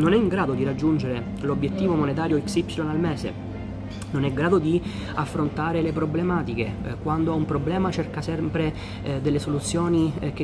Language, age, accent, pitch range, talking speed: Italian, 30-49, native, 120-160 Hz, 160 wpm